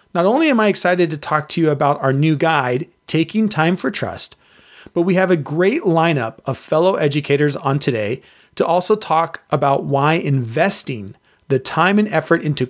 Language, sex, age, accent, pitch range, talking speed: English, male, 30-49, American, 145-185 Hz, 185 wpm